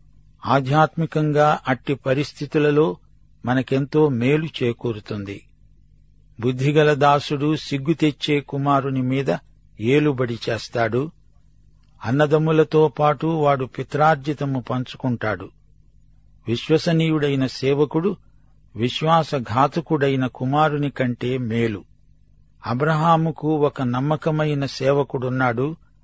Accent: native